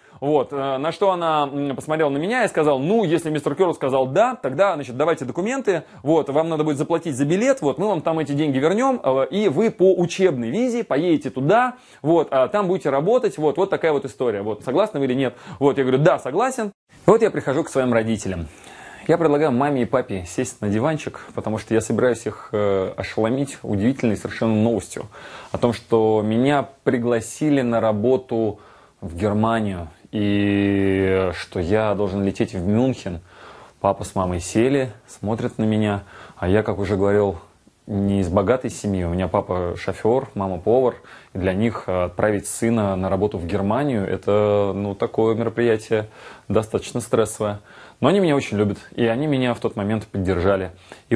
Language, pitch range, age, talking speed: Russian, 100-135 Hz, 20-39, 175 wpm